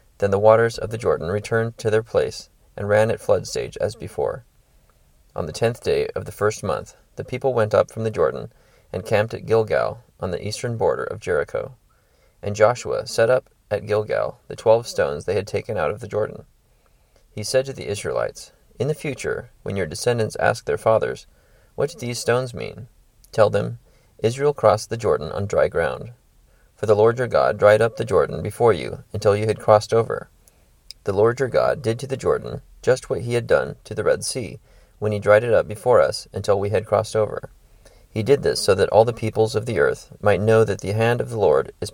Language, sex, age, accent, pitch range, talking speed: English, male, 30-49, American, 105-125 Hz, 215 wpm